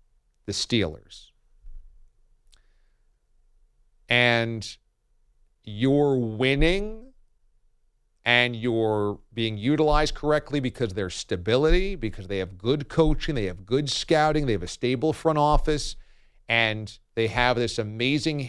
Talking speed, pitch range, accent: 110 wpm, 110-150 Hz, American